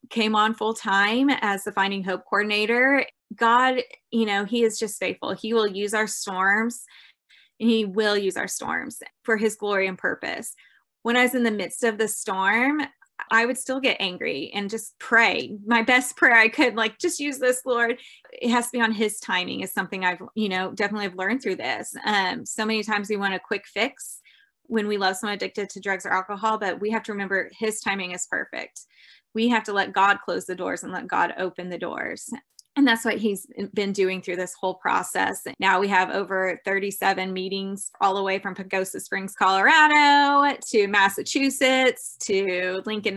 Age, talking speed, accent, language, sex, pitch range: 20-39, 200 wpm, American, English, female, 195-235 Hz